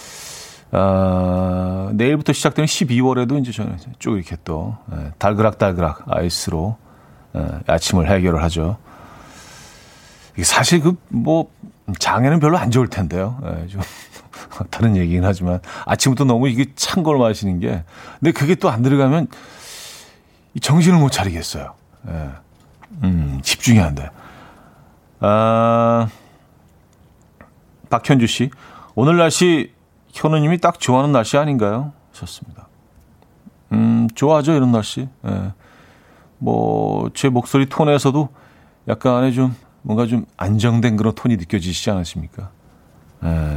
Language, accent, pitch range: Korean, native, 90-135 Hz